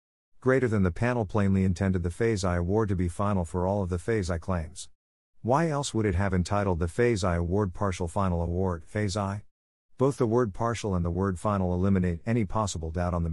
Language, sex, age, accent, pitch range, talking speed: English, male, 50-69, American, 90-110 Hz, 220 wpm